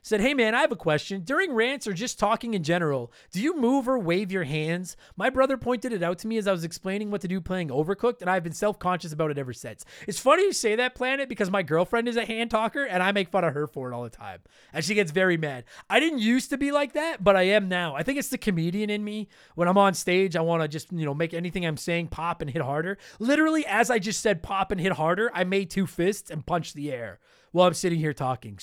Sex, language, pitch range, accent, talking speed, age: male, English, 160-225 Hz, American, 275 wpm, 20-39